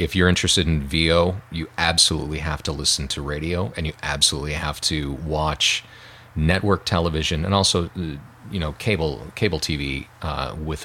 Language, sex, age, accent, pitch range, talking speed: English, male, 40-59, American, 75-90 Hz, 160 wpm